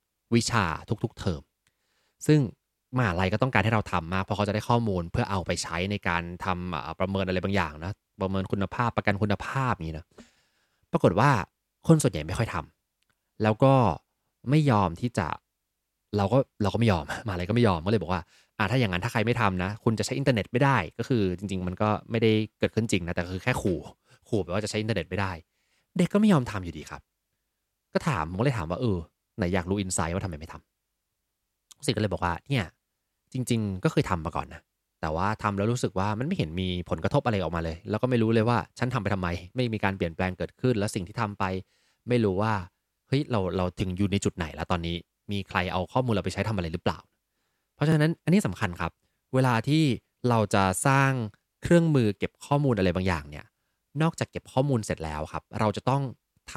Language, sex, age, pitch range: Thai, male, 20-39, 90-120 Hz